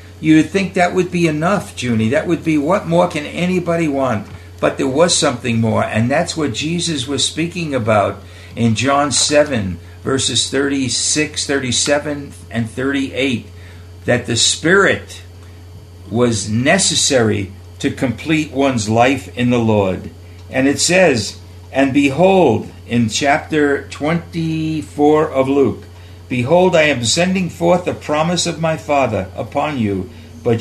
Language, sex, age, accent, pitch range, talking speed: English, male, 60-79, American, 110-155 Hz, 135 wpm